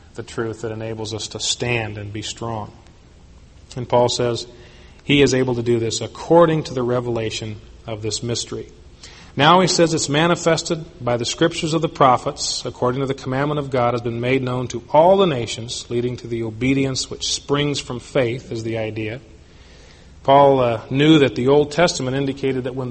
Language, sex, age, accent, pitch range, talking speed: English, male, 40-59, American, 115-140 Hz, 190 wpm